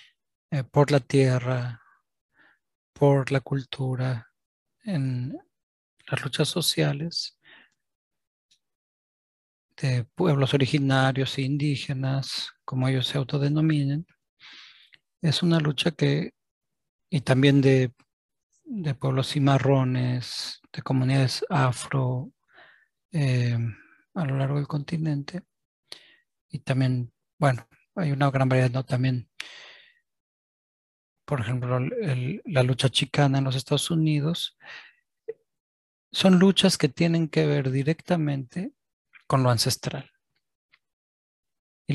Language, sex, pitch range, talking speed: Spanish, male, 130-155 Hz, 95 wpm